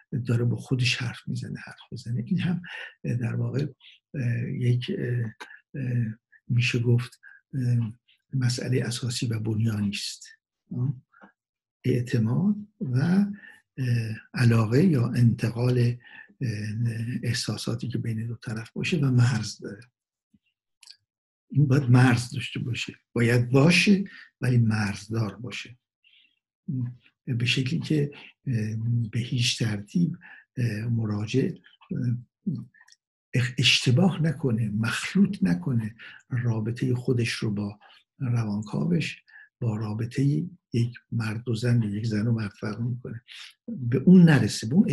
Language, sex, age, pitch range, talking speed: Persian, male, 60-79, 115-135 Hz, 100 wpm